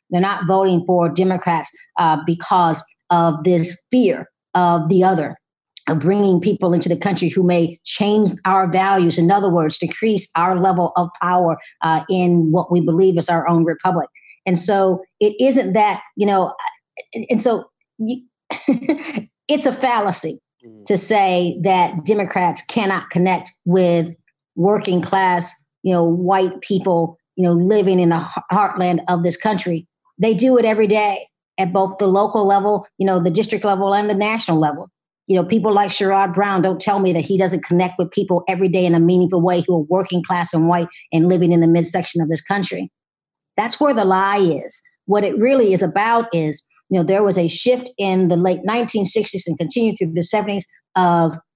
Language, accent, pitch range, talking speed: English, American, 175-200 Hz, 180 wpm